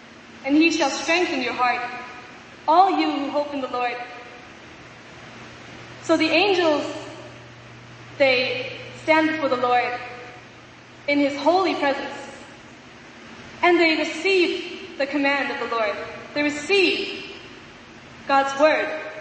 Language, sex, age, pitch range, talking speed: English, female, 20-39, 275-355 Hz, 115 wpm